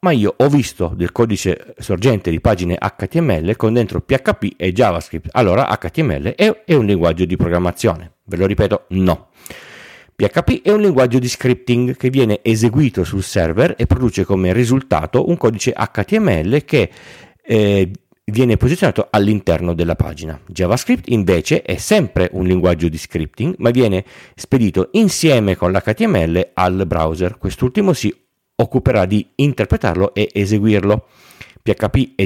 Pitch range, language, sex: 90-125 Hz, Italian, male